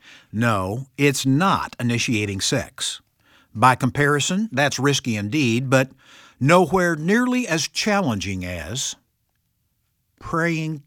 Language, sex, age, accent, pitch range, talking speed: English, male, 60-79, American, 110-160 Hz, 95 wpm